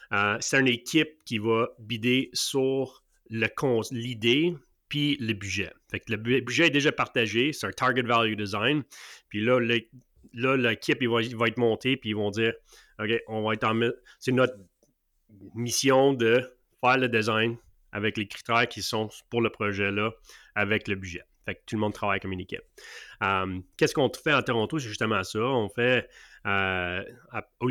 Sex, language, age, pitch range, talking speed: male, French, 30-49, 100-120 Hz, 190 wpm